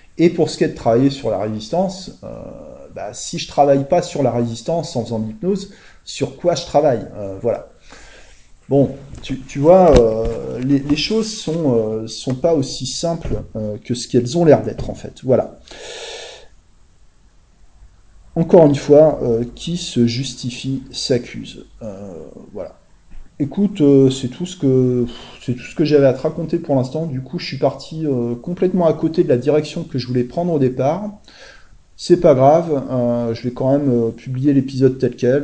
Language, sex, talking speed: French, male, 185 wpm